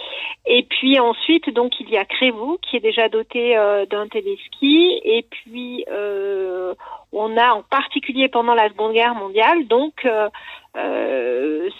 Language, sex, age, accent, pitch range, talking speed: French, female, 40-59, French, 225-300 Hz, 155 wpm